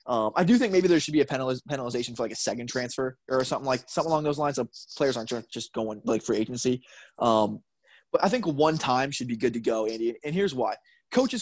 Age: 20-39